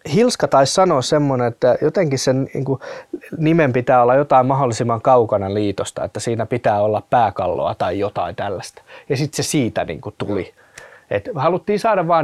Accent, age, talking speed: native, 20-39, 170 wpm